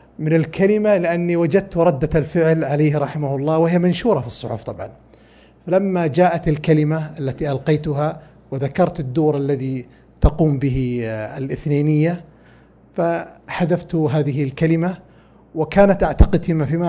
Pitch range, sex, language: 145-185 Hz, male, Arabic